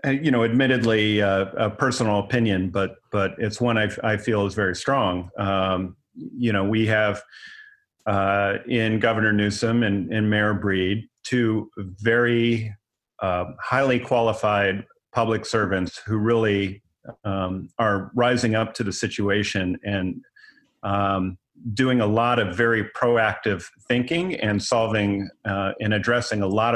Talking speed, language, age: 135 wpm, English, 40-59